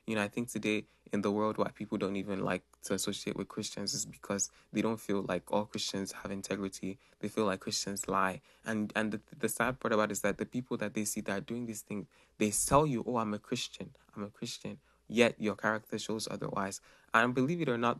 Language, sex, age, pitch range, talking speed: English, male, 20-39, 100-115 Hz, 240 wpm